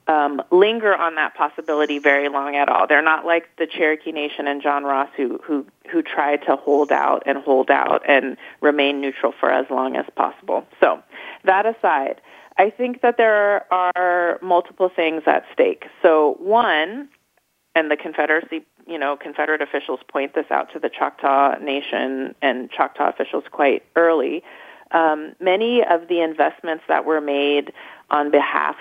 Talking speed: 165 wpm